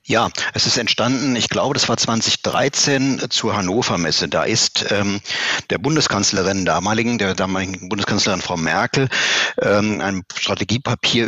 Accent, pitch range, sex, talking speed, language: German, 90-115 Hz, male, 140 wpm, German